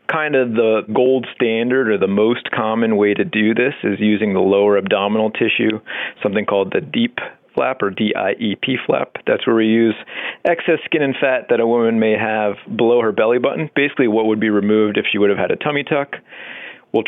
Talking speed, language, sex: 215 wpm, English, male